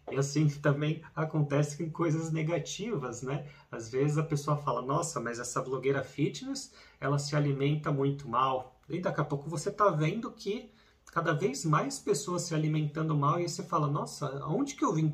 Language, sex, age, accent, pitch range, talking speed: Portuguese, male, 30-49, Brazilian, 135-165 Hz, 180 wpm